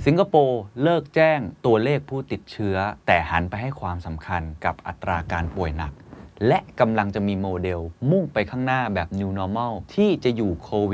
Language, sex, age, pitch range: Thai, male, 20-39, 90-125 Hz